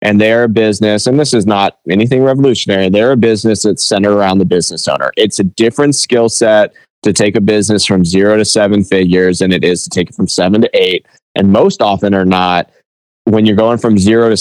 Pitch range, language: 95-110 Hz, English